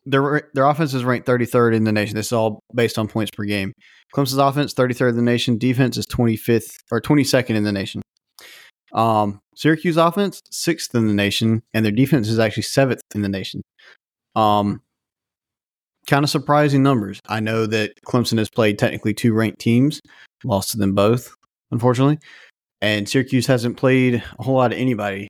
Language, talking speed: English, 180 wpm